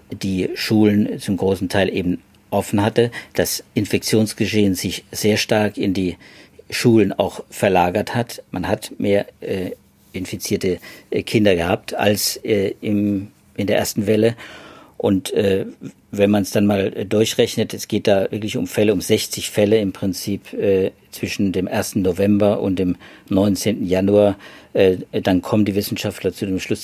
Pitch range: 100-110 Hz